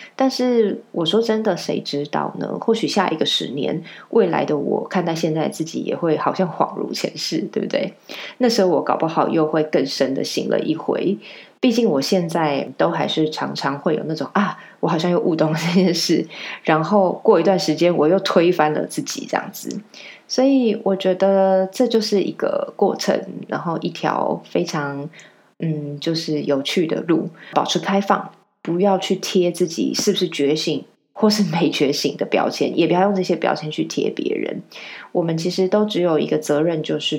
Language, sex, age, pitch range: Chinese, female, 20-39, 155-200 Hz